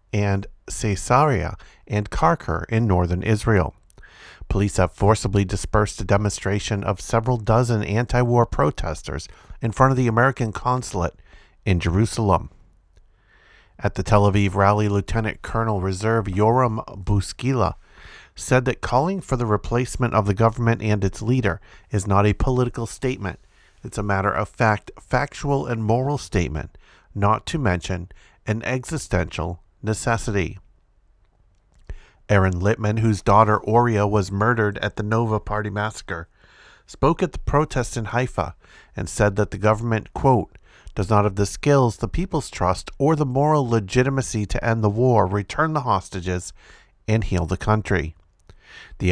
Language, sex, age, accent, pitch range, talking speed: English, male, 50-69, American, 95-120 Hz, 140 wpm